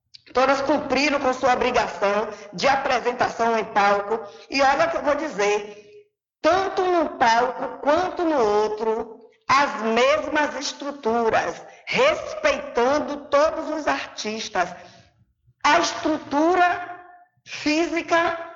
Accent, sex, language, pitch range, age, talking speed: Brazilian, female, Portuguese, 210-285 Hz, 20-39, 105 wpm